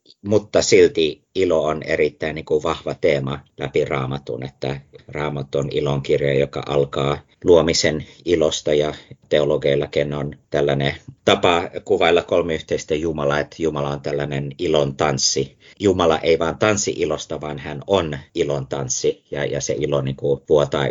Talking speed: 145 wpm